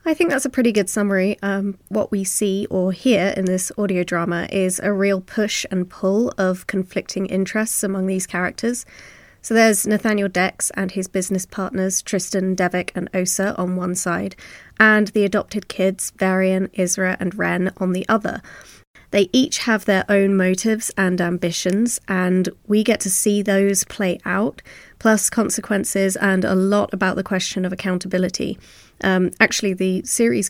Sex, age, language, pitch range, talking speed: female, 20-39, English, 185-205 Hz, 165 wpm